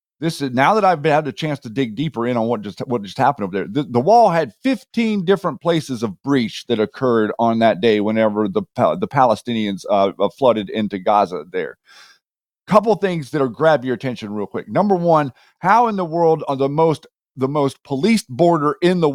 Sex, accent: male, American